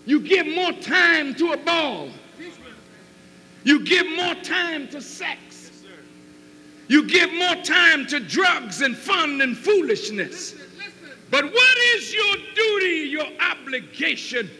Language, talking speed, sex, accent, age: French, 125 wpm, male, American, 60-79